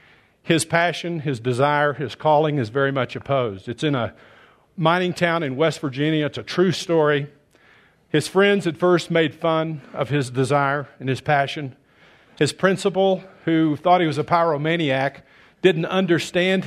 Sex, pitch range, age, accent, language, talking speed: male, 135-165 Hz, 50-69, American, English, 160 wpm